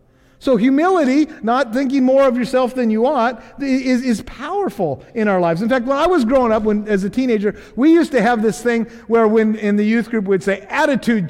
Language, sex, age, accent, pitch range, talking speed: English, male, 50-69, American, 185-250 Hz, 225 wpm